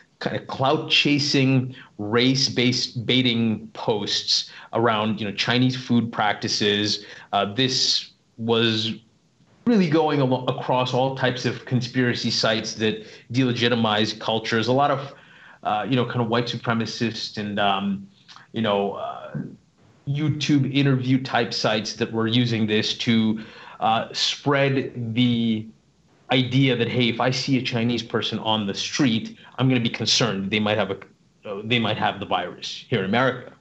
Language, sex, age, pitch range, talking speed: English, male, 30-49, 110-130 Hz, 150 wpm